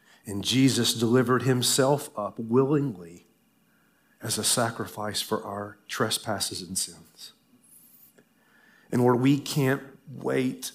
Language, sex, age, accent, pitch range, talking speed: English, male, 40-59, American, 100-125 Hz, 105 wpm